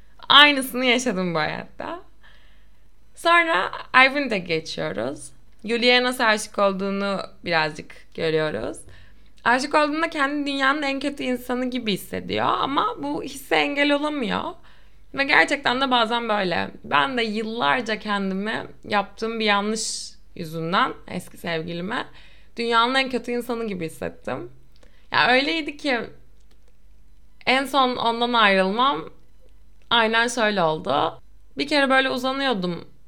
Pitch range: 180-260 Hz